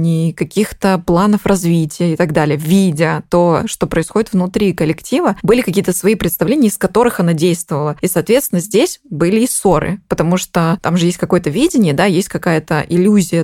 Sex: female